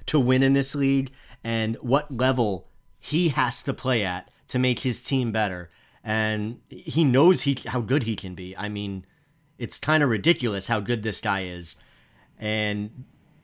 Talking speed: 175 wpm